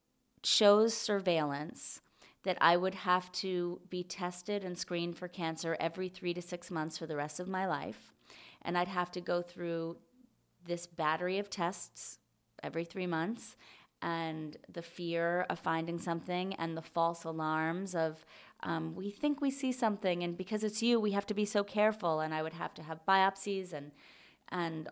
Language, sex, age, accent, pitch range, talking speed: English, female, 30-49, American, 165-190 Hz, 175 wpm